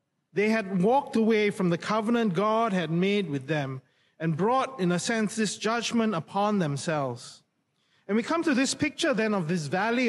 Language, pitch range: English, 175-230 Hz